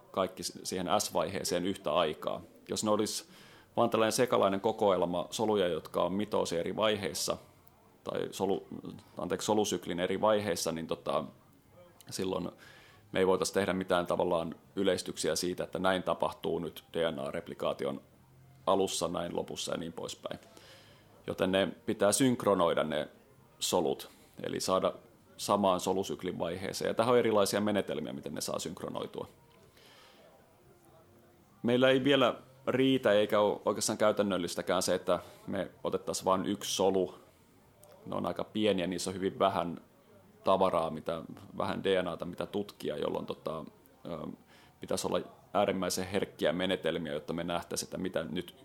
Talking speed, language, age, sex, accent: 135 wpm, Finnish, 30-49, male, native